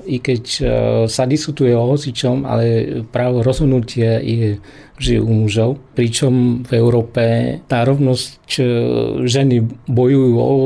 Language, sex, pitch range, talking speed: Slovak, male, 115-130 Hz, 105 wpm